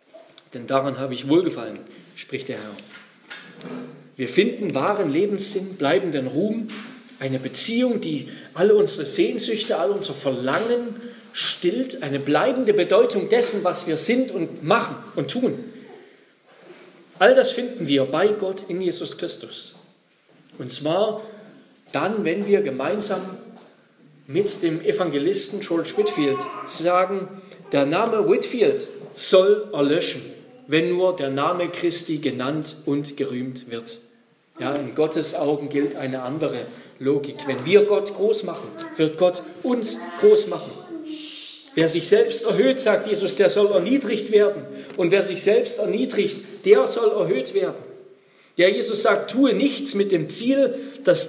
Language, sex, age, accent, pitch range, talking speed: German, male, 40-59, German, 165-255 Hz, 135 wpm